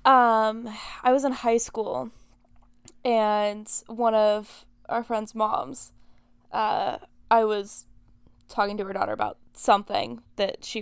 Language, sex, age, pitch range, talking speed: English, female, 10-29, 195-225 Hz, 130 wpm